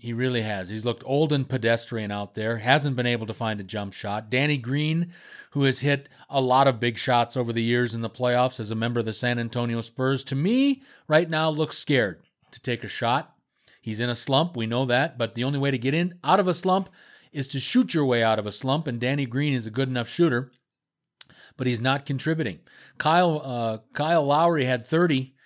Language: English